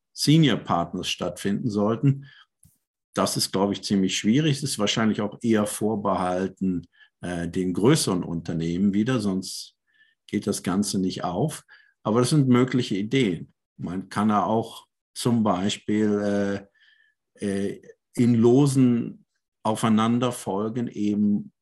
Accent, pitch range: German, 95-125 Hz